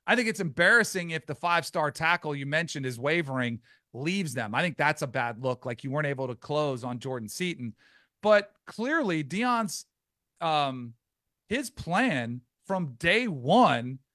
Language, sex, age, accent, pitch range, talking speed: English, male, 40-59, American, 145-195 Hz, 160 wpm